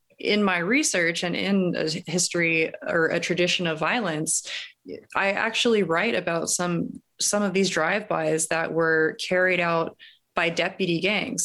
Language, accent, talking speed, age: English, American, 145 wpm, 20-39